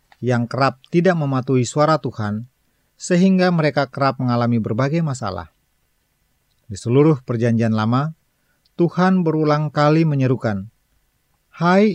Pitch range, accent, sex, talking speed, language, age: 120-155 Hz, native, male, 105 wpm, Indonesian, 40-59